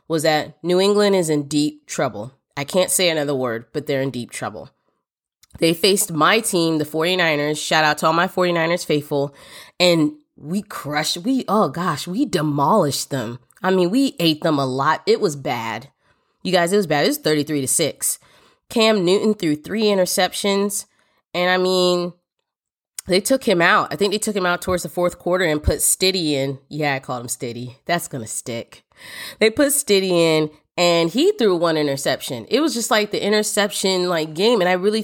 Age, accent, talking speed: 20-39, American, 195 wpm